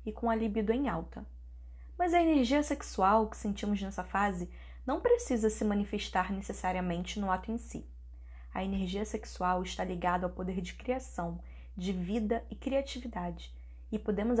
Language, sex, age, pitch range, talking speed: Portuguese, female, 10-29, 160-230 Hz, 160 wpm